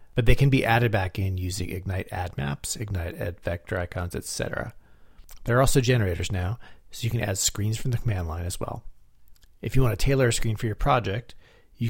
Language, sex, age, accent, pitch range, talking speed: English, male, 40-59, American, 95-120 Hz, 215 wpm